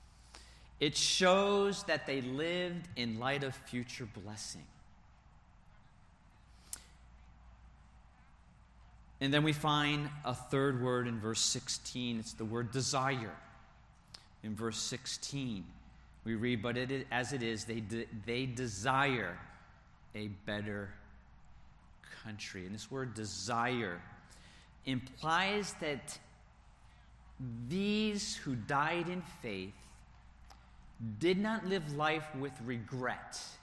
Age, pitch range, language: 40-59, 90-145 Hz, English